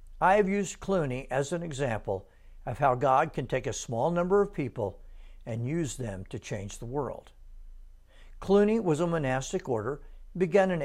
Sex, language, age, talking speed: male, English, 60-79, 170 wpm